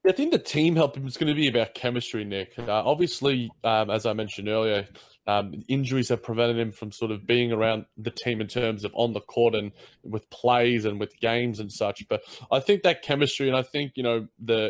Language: English